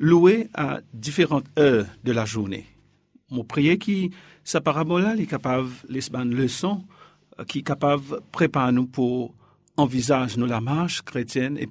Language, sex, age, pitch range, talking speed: French, male, 50-69, 125-175 Hz, 140 wpm